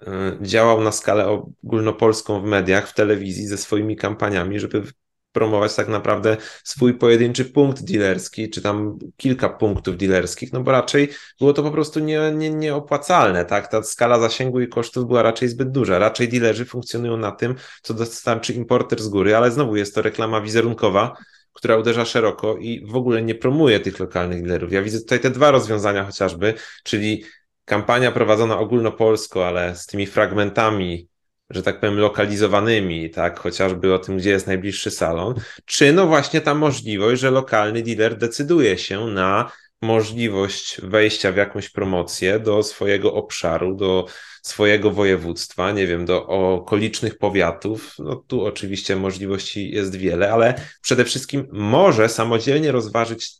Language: Polish